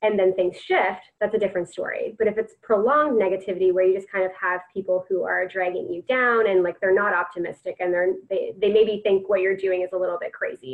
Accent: American